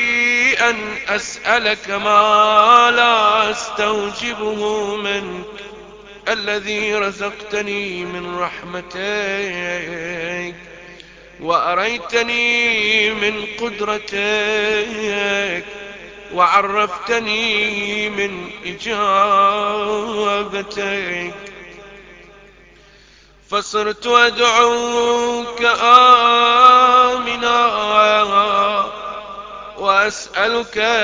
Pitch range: 200-230 Hz